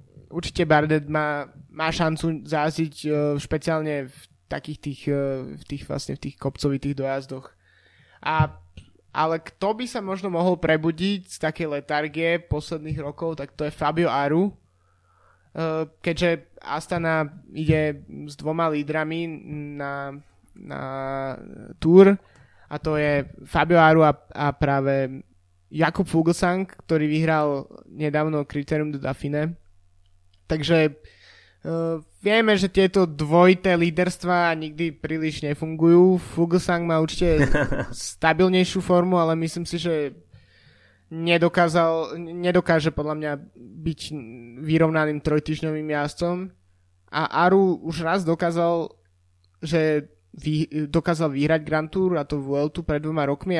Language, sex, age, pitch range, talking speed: Slovak, male, 20-39, 145-170 Hz, 115 wpm